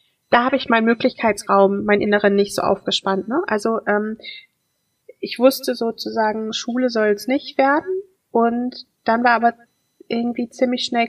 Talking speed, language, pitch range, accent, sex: 145 wpm, German, 205-245 Hz, German, female